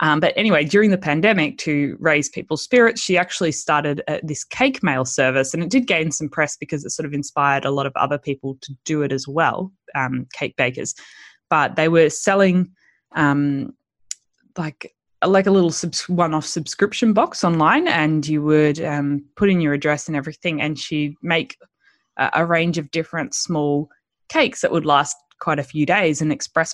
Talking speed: 190 wpm